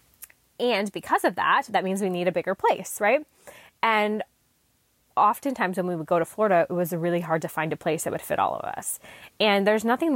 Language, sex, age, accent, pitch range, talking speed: English, female, 20-39, American, 170-205 Hz, 220 wpm